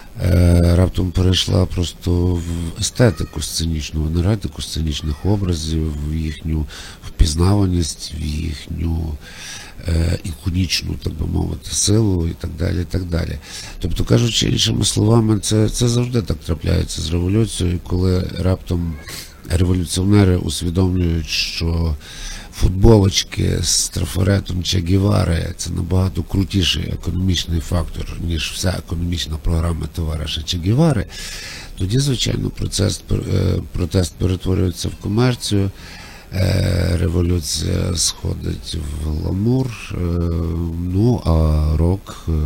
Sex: male